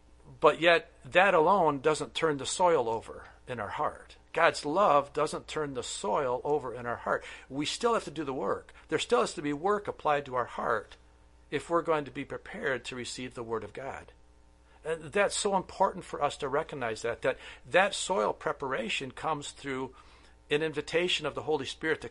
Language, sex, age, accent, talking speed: English, male, 50-69, American, 195 wpm